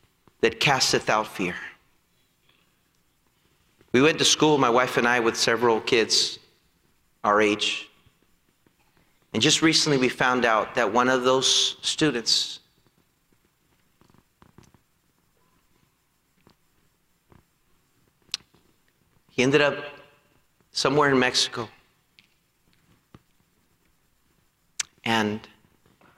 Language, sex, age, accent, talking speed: English, male, 40-59, American, 80 wpm